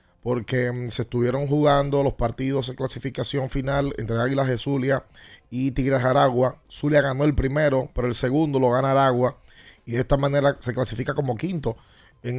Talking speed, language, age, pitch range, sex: 175 wpm, Spanish, 30-49, 120-145 Hz, male